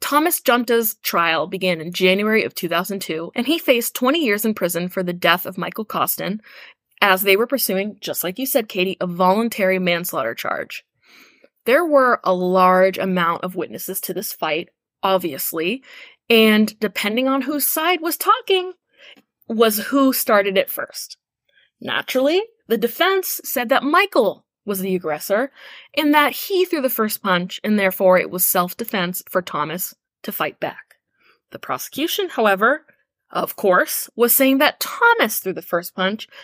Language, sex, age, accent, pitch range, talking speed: English, female, 10-29, American, 185-270 Hz, 160 wpm